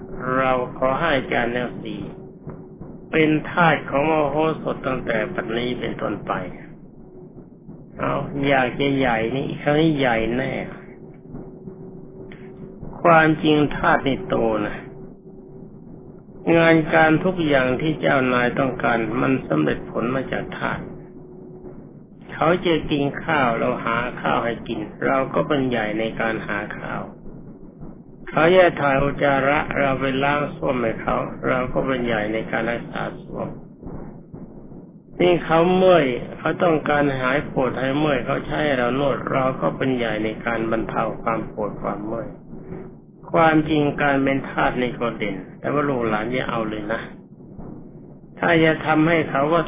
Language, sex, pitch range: Thai, male, 125-160 Hz